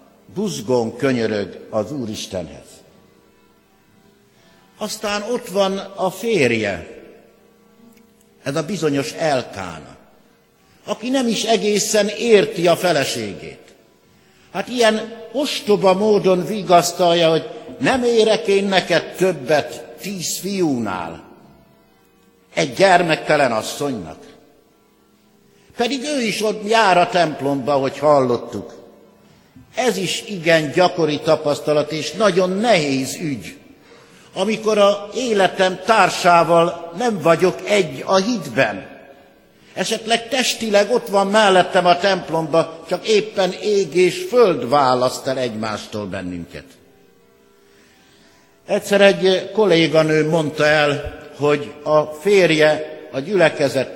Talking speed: 100 wpm